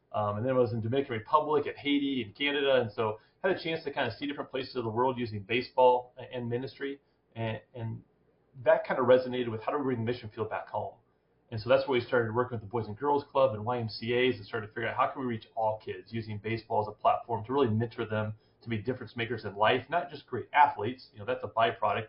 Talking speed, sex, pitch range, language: 265 wpm, male, 110-135 Hz, English